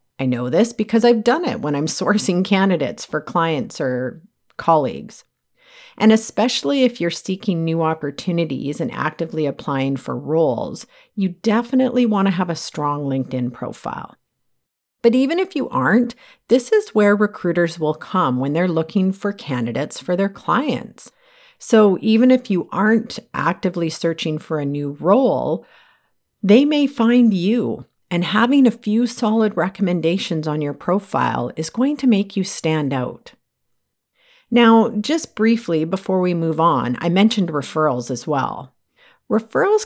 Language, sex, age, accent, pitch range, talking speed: English, female, 50-69, American, 155-220 Hz, 150 wpm